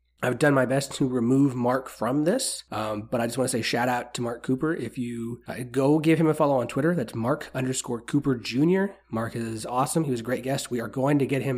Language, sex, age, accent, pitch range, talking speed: English, male, 30-49, American, 115-145 Hz, 260 wpm